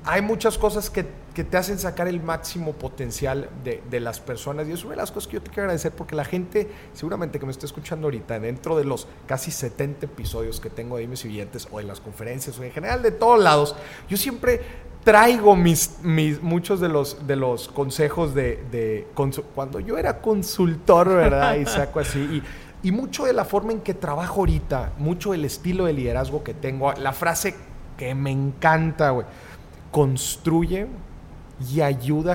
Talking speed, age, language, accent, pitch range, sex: 195 wpm, 30-49, Spanish, Mexican, 125-170 Hz, male